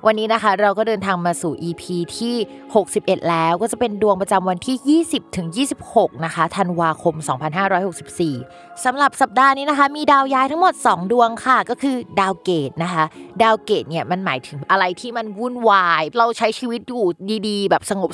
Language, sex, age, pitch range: Thai, female, 20-39, 170-240 Hz